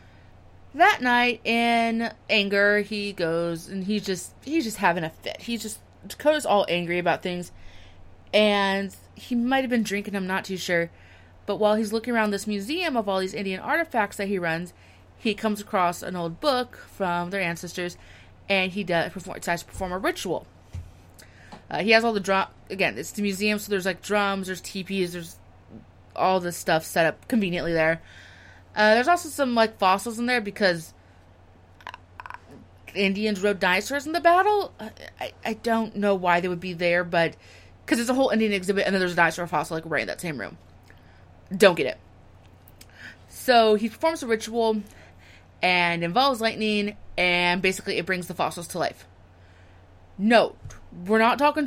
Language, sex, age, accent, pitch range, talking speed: English, female, 30-49, American, 160-220 Hz, 175 wpm